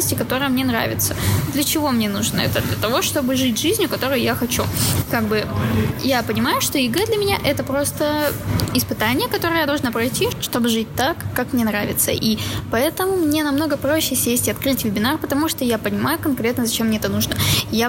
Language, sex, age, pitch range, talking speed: Russian, female, 10-29, 225-265 Hz, 190 wpm